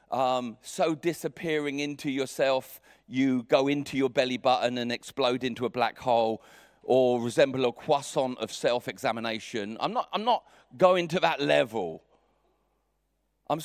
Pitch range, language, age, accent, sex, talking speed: 120-155 Hz, English, 40-59, British, male, 130 wpm